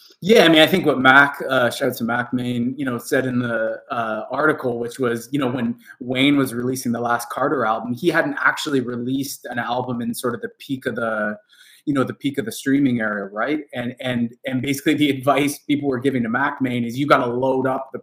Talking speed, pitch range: 240 wpm, 120-145 Hz